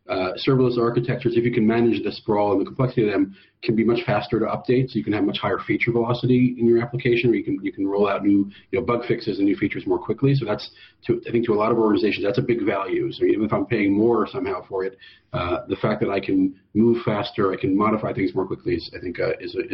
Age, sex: 40-59, male